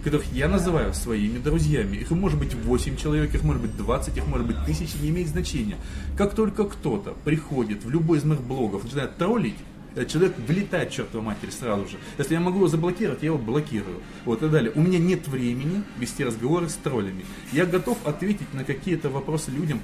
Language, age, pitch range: Russian, 30-49, 130-175 Hz